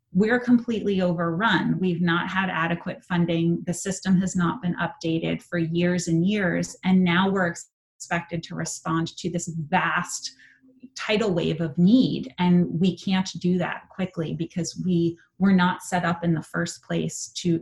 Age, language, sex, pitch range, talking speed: 30-49, English, female, 170-190 Hz, 165 wpm